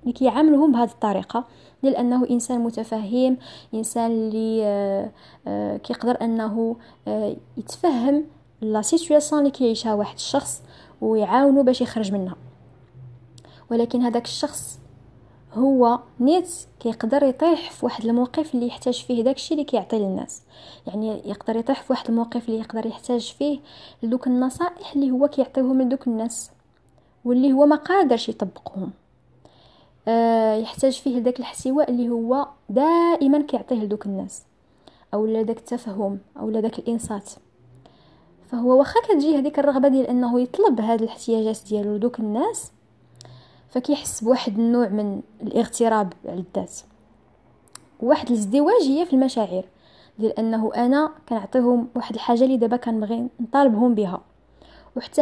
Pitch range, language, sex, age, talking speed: 220-270 Hz, Arabic, female, 20-39, 120 wpm